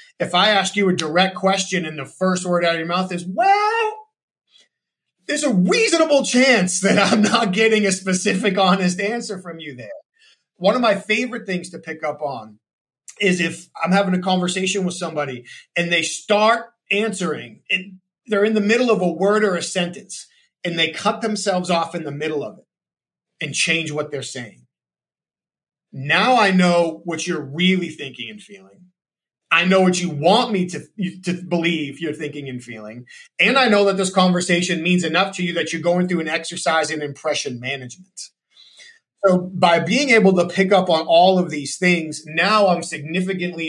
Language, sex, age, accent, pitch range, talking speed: English, male, 30-49, American, 165-200 Hz, 185 wpm